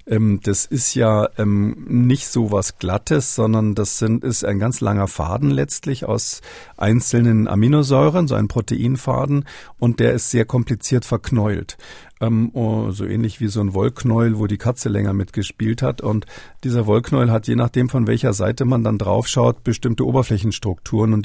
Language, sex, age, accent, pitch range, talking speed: German, male, 50-69, German, 105-120 Hz, 160 wpm